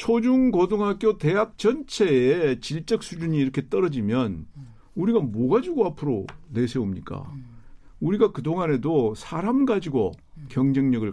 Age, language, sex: 50-69, Korean, male